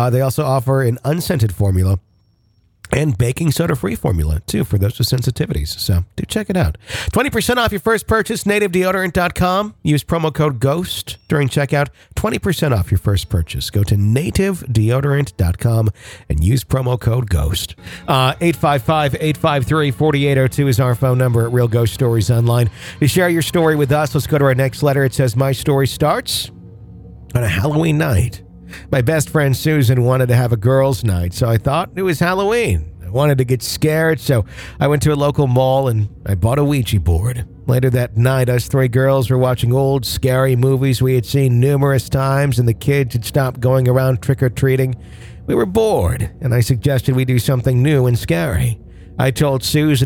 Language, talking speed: English, 180 wpm